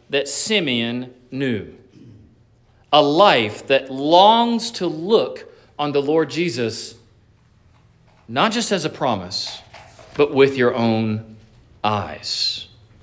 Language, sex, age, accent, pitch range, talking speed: English, male, 40-59, American, 115-175 Hz, 105 wpm